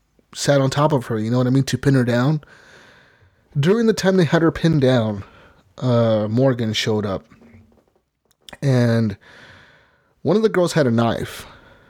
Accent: American